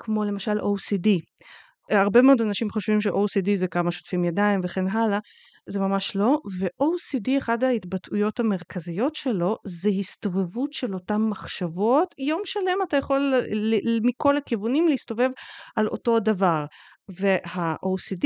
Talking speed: 125 wpm